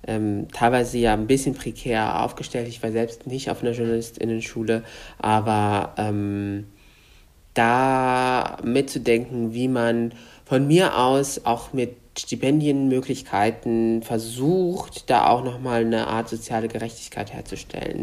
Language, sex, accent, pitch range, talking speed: German, male, German, 115-130 Hz, 115 wpm